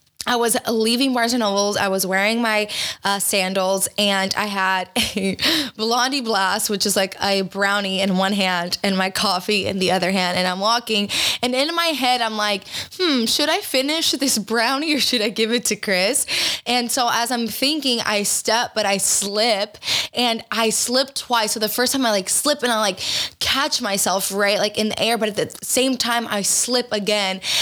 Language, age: English, 20-39